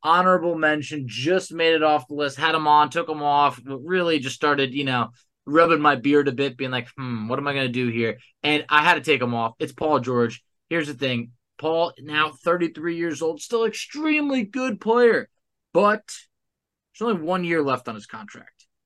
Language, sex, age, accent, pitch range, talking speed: English, male, 20-39, American, 125-160 Hz, 205 wpm